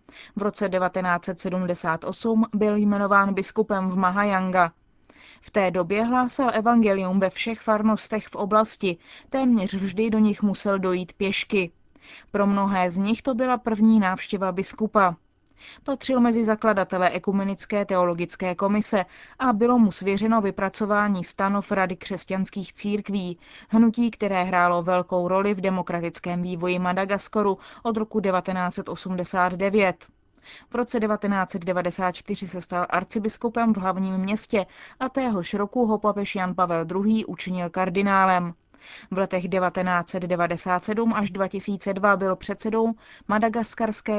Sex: female